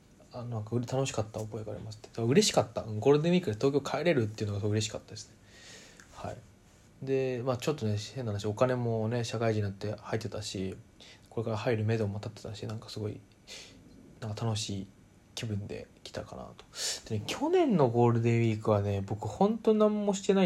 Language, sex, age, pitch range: Japanese, male, 20-39, 105-150 Hz